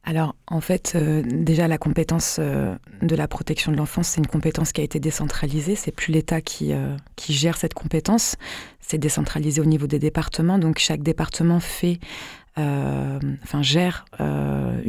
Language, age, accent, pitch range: French, 20-39, French, 145-165 Hz